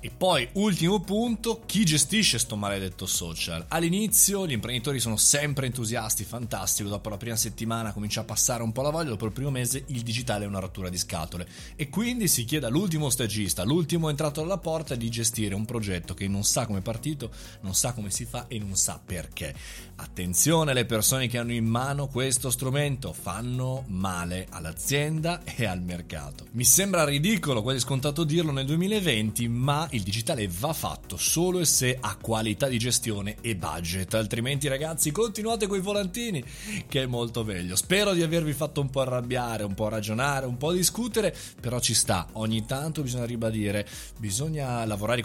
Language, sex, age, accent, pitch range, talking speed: Italian, male, 30-49, native, 105-150 Hz, 180 wpm